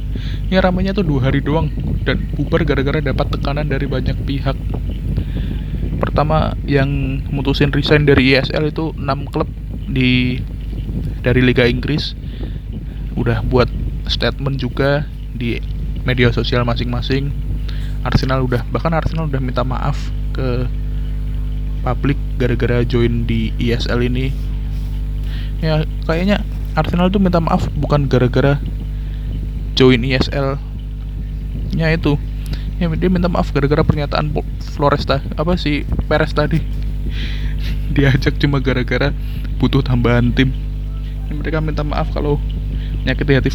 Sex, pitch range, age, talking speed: male, 125-145 Hz, 20-39, 115 wpm